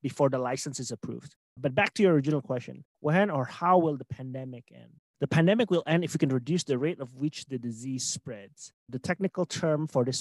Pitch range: 135-175 Hz